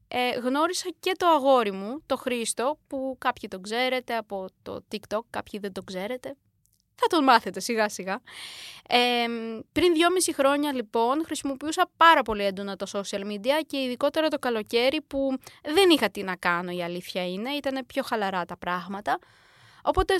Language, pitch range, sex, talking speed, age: Greek, 215-295 Hz, female, 155 wpm, 20-39